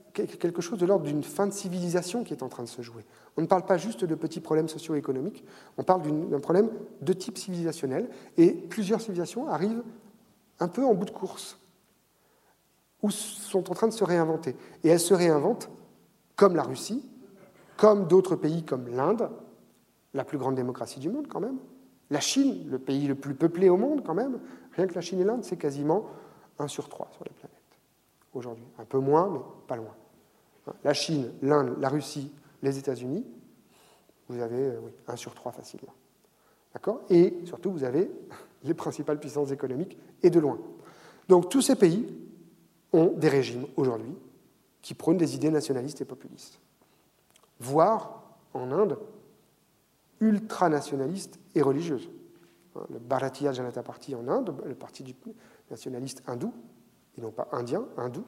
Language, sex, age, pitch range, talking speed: French, male, 40-59, 140-210 Hz, 165 wpm